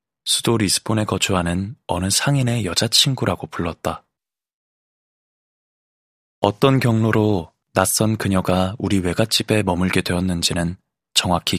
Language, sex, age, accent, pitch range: Korean, male, 20-39, native, 90-110 Hz